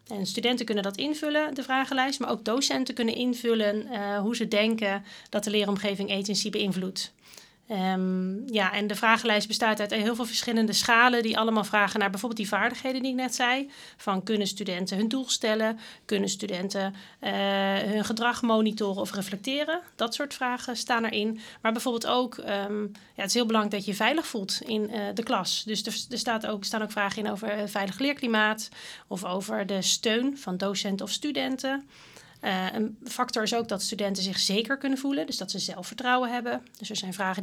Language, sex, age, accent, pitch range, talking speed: English, female, 40-59, Dutch, 200-235 Hz, 190 wpm